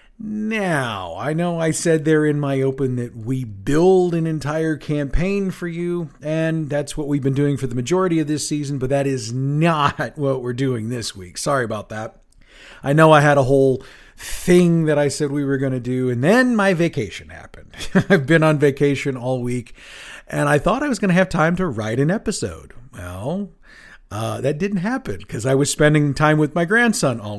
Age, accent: 40-59, American